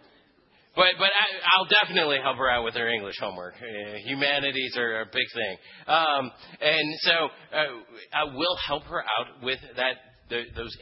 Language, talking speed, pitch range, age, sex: English, 160 wpm, 130-170 Hz, 30-49, male